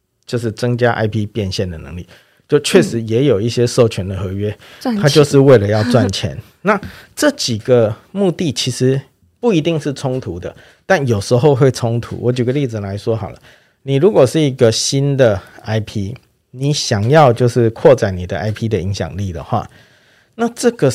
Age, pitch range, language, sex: 50-69, 100-130 Hz, Chinese, male